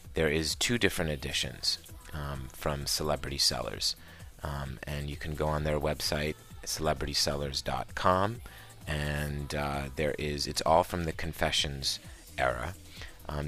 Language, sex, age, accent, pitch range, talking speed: English, male, 30-49, American, 70-80 Hz, 125 wpm